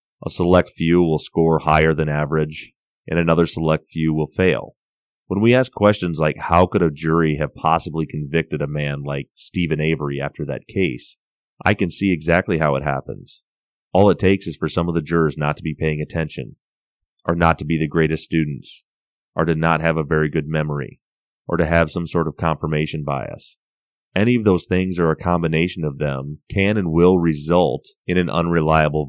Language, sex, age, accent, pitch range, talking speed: English, male, 30-49, American, 75-90 Hz, 195 wpm